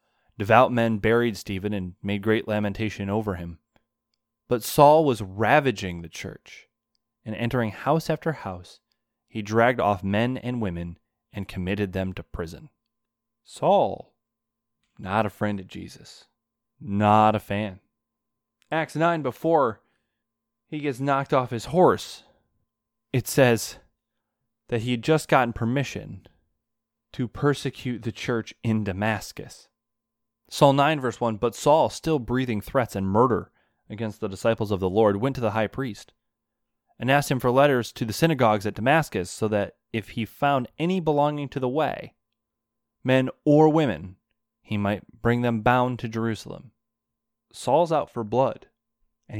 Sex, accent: male, American